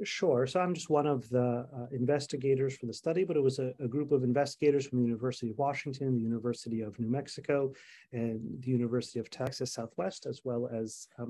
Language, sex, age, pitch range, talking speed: English, male, 30-49, 130-155 Hz, 210 wpm